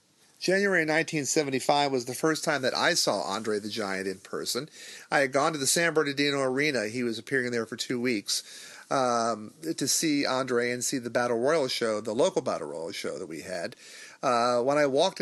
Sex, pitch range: male, 120-150 Hz